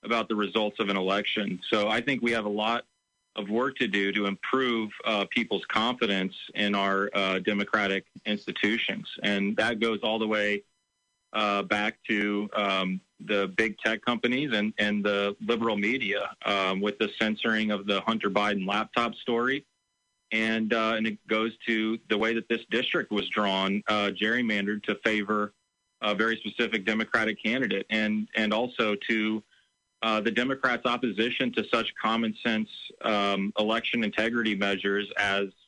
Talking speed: 160 wpm